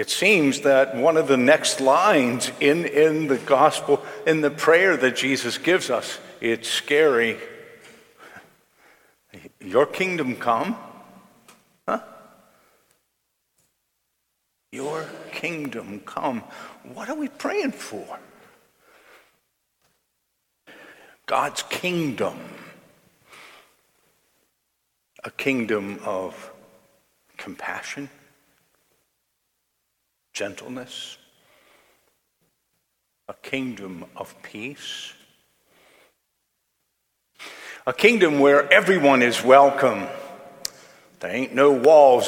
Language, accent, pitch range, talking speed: English, American, 125-155 Hz, 75 wpm